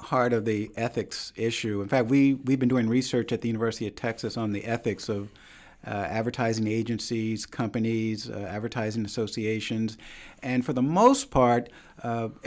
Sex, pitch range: male, 115-135 Hz